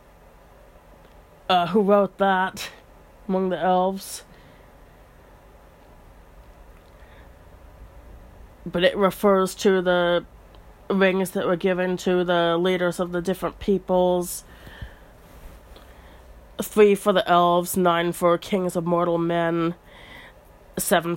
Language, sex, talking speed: English, female, 95 wpm